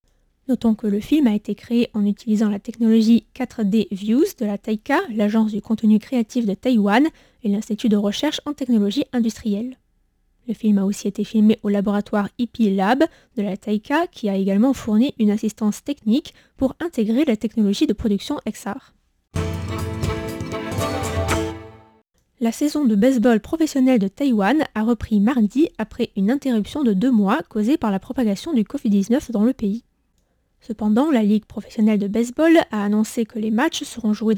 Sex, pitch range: female, 205-245 Hz